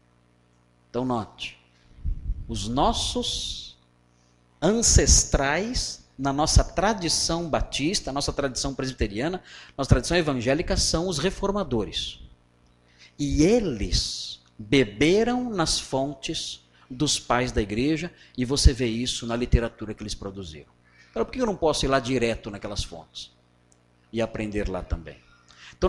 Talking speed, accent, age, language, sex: 120 wpm, Brazilian, 50-69, Portuguese, male